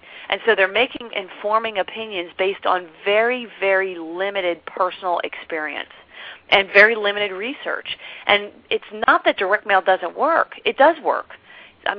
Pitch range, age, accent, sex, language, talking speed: 180-220 Hz, 40-59, American, female, English, 150 wpm